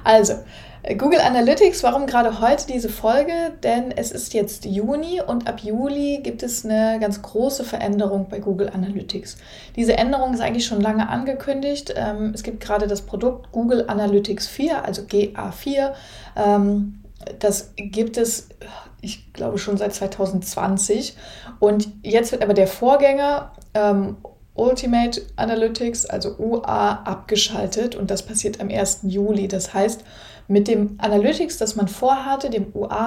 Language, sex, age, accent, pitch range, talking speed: German, female, 20-39, German, 200-230 Hz, 140 wpm